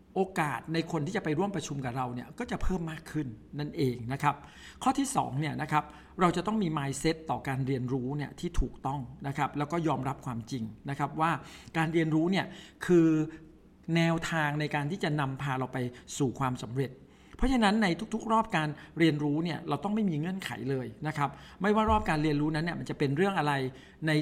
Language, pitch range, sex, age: Thai, 135-170 Hz, male, 60-79